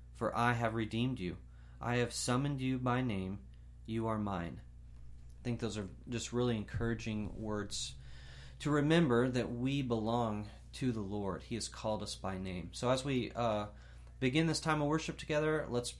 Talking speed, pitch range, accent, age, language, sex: 175 wpm, 90-120 Hz, American, 30-49, English, male